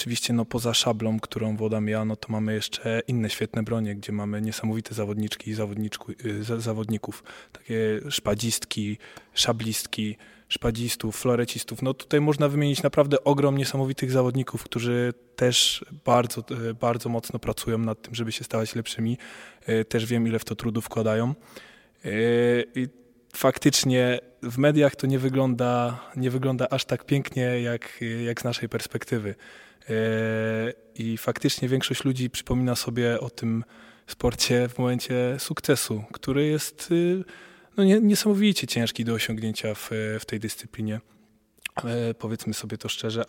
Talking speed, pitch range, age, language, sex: 125 wpm, 110-125 Hz, 20-39, Polish, male